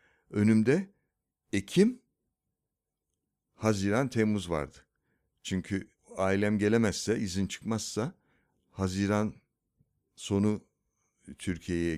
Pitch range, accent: 95-120 Hz, native